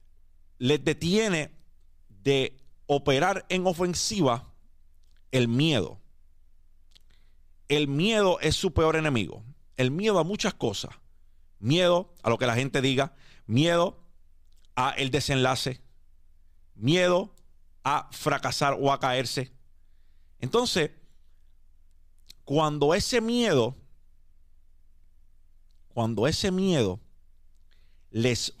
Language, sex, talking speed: Spanish, male, 90 wpm